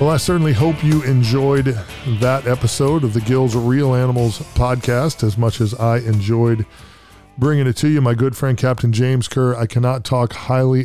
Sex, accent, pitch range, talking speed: male, American, 115-130 Hz, 185 wpm